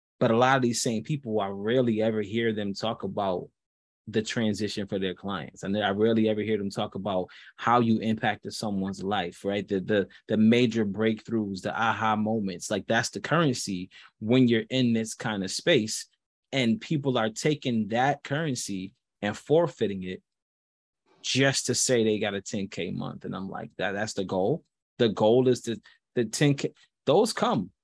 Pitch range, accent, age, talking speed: 110-140 Hz, American, 20-39, 185 wpm